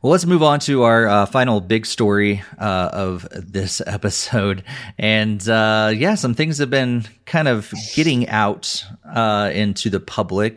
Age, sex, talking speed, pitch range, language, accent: 30-49, male, 165 wpm, 95-110 Hz, English, American